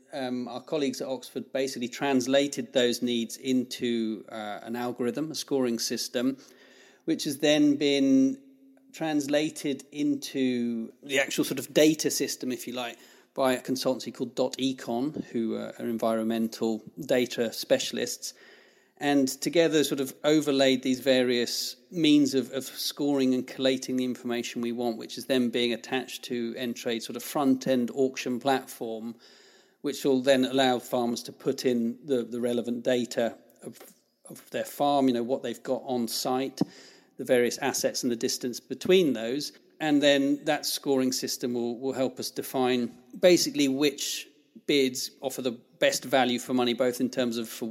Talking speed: 160 wpm